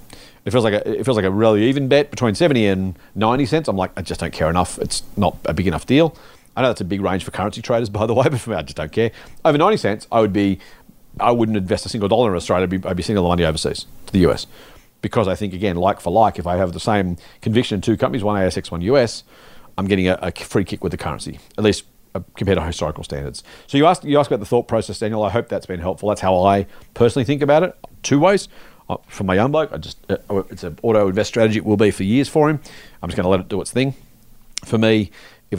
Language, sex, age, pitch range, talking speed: English, male, 40-59, 90-115 Hz, 270 wpm